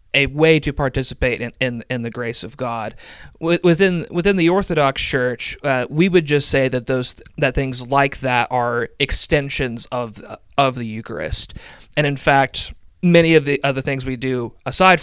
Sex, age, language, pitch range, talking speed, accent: male, 30-49, English, 120-140 Hz, 175 wpm, American